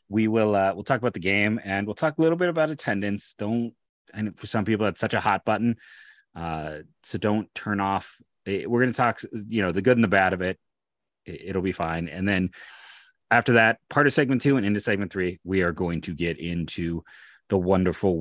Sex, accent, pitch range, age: male, American, 90-110 Hz, 30-49